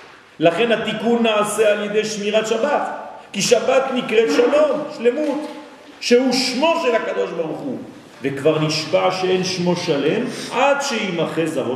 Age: 40-59